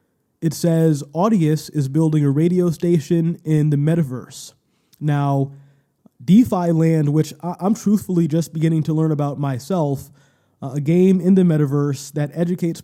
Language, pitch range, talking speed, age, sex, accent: English, 145-170 Hz, 145 wpm, 20-39, male, American